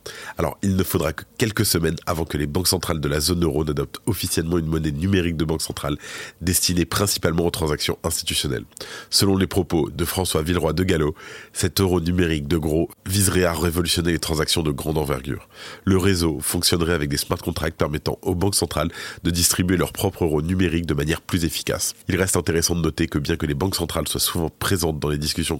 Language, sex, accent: French, male, French